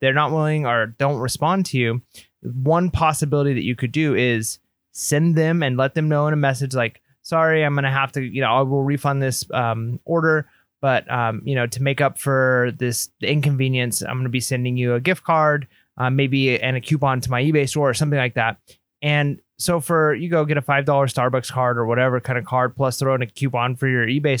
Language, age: English, 30-49